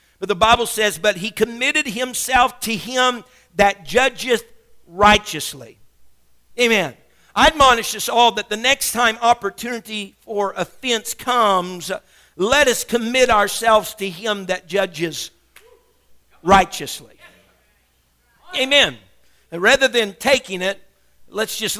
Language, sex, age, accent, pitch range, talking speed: English, male, 50-69, American, 190-240 Hz, 115 wpm